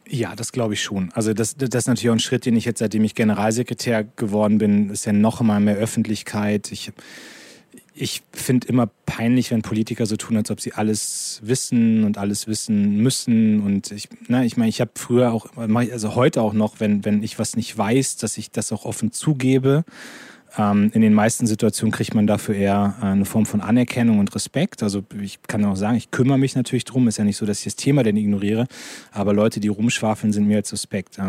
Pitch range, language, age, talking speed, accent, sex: 105-125 Hz, English, 30-49, 215 wpm, German, male